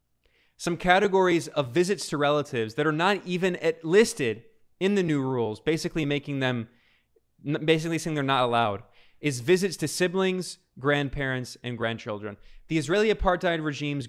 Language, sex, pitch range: English, male, 135-175 Hz